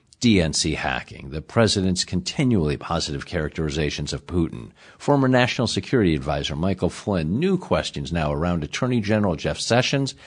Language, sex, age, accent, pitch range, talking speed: English, male, 50-69, American, 85-125 Hz, 135 wpm